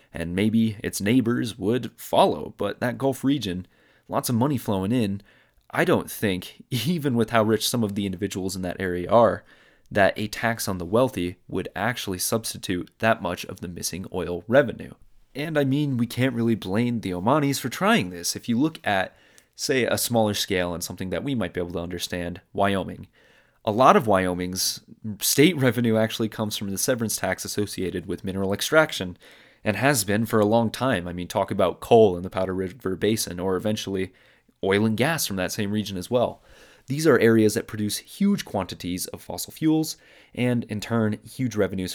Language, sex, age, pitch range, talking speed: English, male, 30-49, 95-120 Hz, 195 wpm